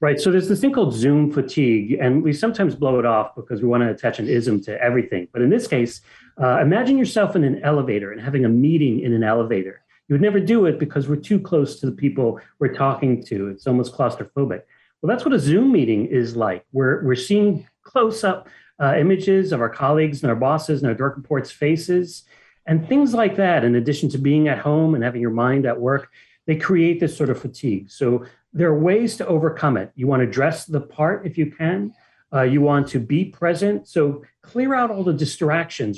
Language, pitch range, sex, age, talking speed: English, 130-180 Hz, male, 40-59, 220 wpm